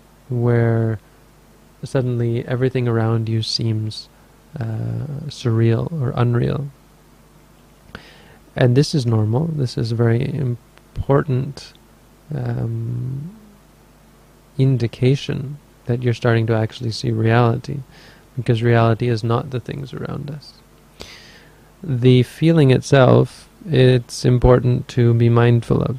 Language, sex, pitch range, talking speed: English, male, 115-130 Hz, 105 wpm